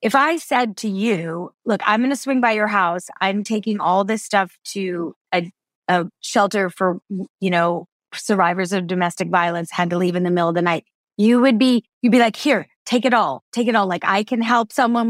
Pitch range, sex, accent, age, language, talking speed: 185-250 Hz, female, American, 30-49, English, 225 wpm